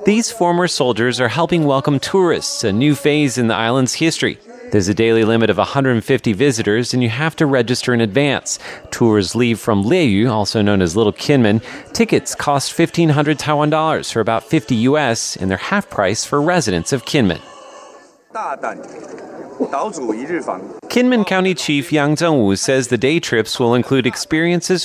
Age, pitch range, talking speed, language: 30-49, 115-155 Hz, 160 wpm, German